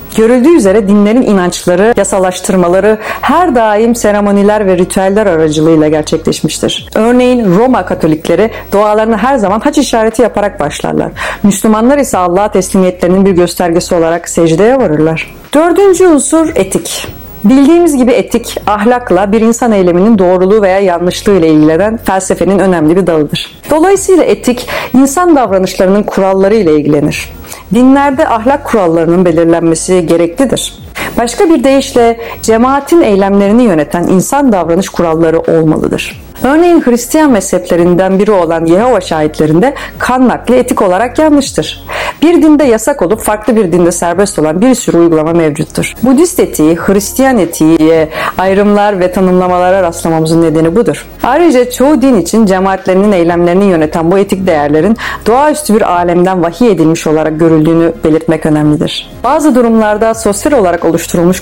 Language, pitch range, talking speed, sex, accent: Turkish, 170-245 Hz, 130 wpm, female, native